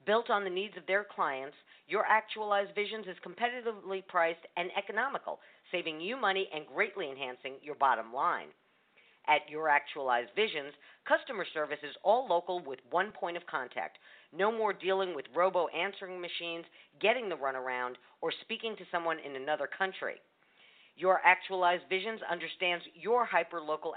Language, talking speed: English, 155 wpm